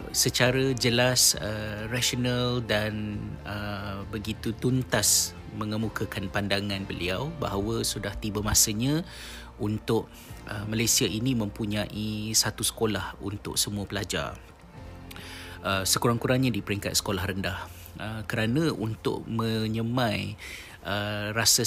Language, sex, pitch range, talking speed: Malay, male, 95-110 Hz, 100 wpm